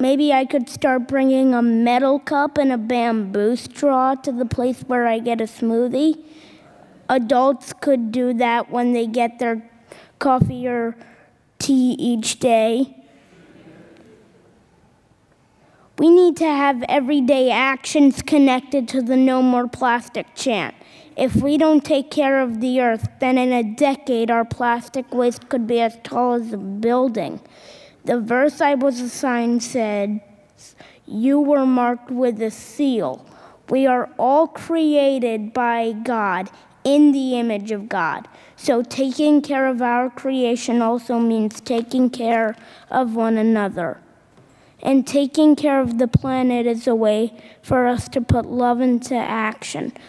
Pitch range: 235-270 Hz